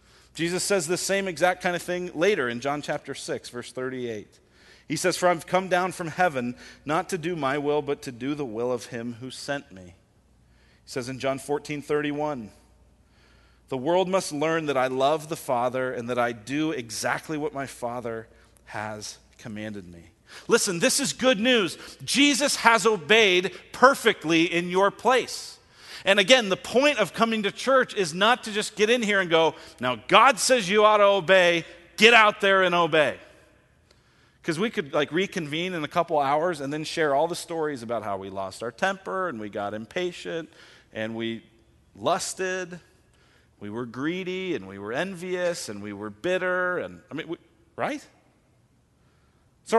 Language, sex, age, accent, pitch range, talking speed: English, male, 40-59, American, 125-195 Hz, 180 wpm